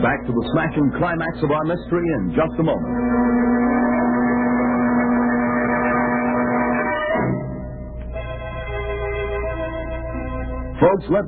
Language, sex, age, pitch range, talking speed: English, male, 60-79, 105-175 Hz, 75 wpm